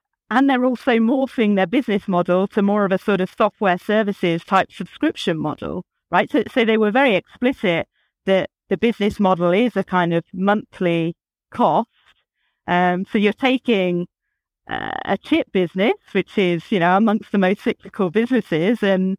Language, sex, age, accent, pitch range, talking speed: English, female, 40-59, British, 175-215 Hz, 165 wpm